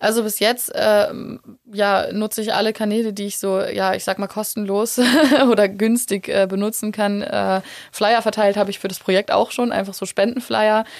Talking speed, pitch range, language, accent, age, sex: 190 wpm, 185-210 Hz, German, German, 20-39, female